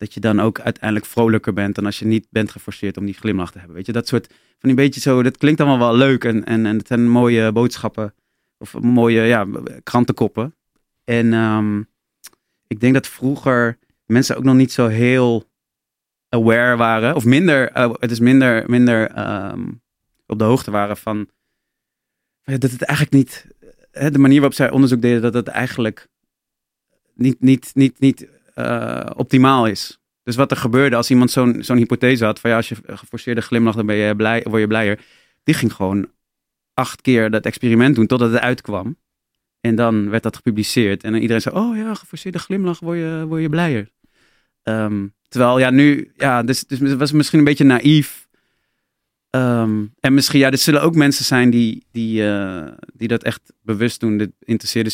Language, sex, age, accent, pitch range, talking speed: Dutch, male, 30-49, Dutch, 110-130 Hz, 190 wpm